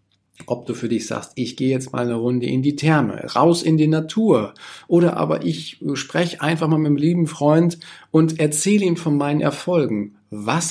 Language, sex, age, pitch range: German, male, 40-59, 120-155 Hz